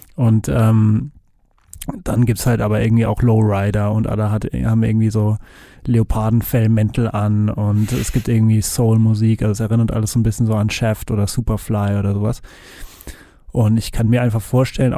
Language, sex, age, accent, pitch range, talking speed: German, male, 20-39, German, 110-120 Hz, 170 wpm